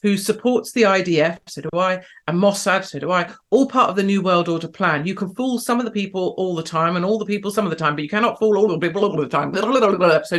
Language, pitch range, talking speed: English, 165-215 Hz, 285 wpm